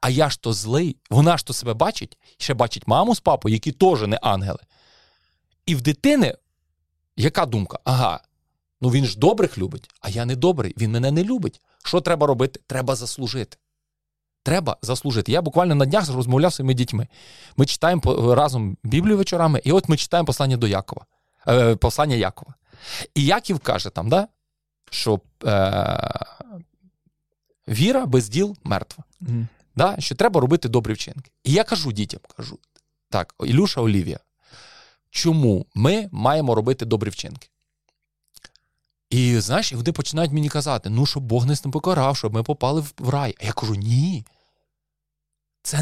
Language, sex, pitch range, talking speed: Ukrainian, male, 115-170 Hz, 155 wpm